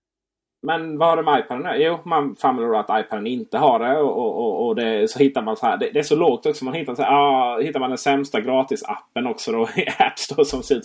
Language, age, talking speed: Swedish, 30-49, 260 wpm